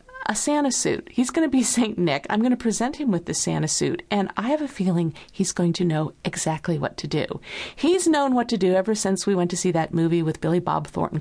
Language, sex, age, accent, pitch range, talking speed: English, female, 50-69, American, 175-245 Hz, 255 wpm